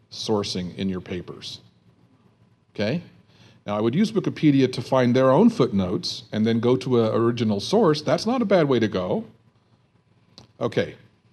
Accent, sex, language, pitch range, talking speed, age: American, male, English, 105-160 Hz, 160 wpm, 50-69